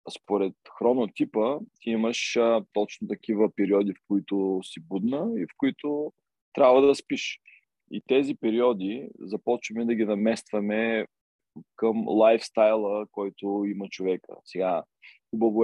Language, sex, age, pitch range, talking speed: Bulgarian, male, 20-39, 95-115 Hz, 125 wpm